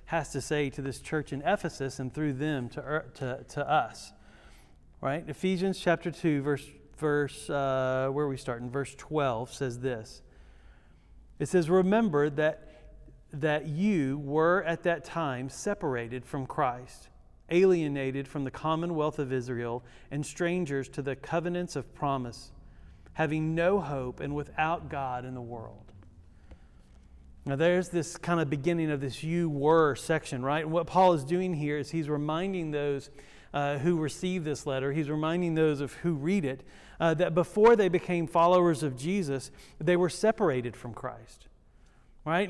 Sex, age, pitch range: male, 40-59, 140-175 Hz